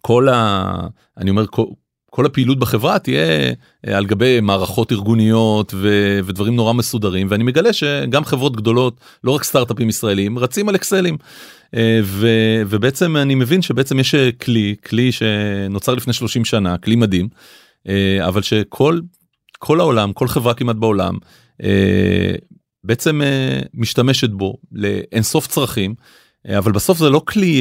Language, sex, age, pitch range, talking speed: Hebrew, male, 30-49, 100-130 Hz, 135 wpm